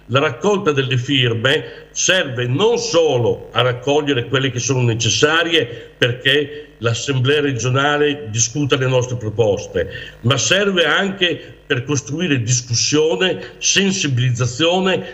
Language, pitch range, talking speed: Italian, 125-160 Hz, 105 wpm